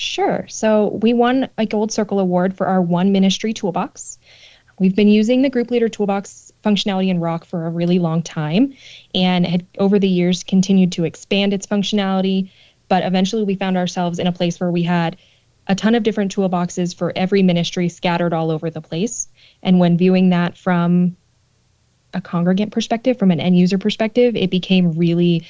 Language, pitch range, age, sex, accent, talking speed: English, 175-205 Hz, 20-39, female, American, 185 wpm